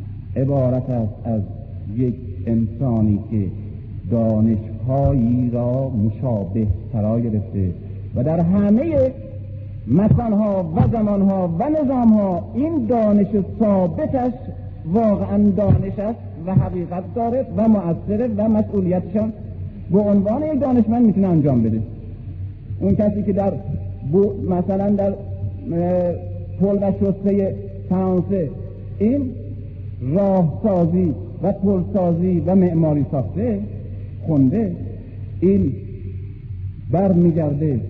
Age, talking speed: 50-69, 95 wpm